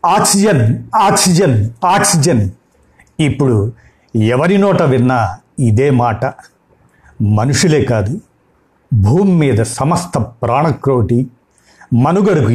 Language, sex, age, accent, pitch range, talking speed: Telugu, male, 50-69, native, 110-150 Hz, 70 wpm